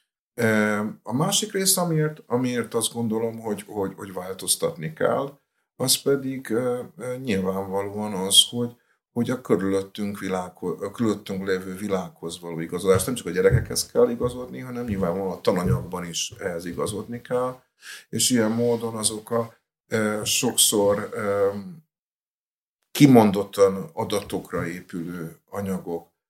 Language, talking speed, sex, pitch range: Hungarian, 115 wpm, male, 95-120 Hz